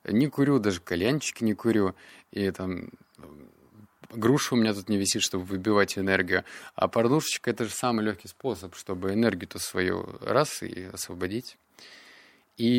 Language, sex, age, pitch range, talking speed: Russian, male, 20-39, 95-115 Hz, 150 wpm